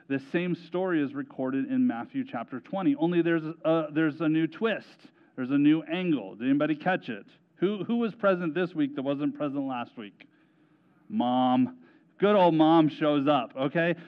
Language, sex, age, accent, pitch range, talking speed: English, male, 40-59, American, 145-195 Hz, 180 wpm